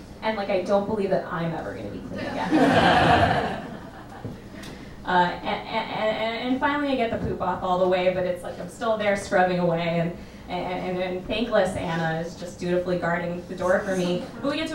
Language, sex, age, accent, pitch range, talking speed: English, female, 20-39, American, 180-260 Hz, 210 wpm